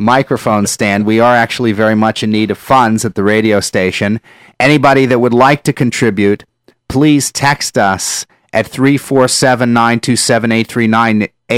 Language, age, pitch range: English, 30-49, 105-125 Hz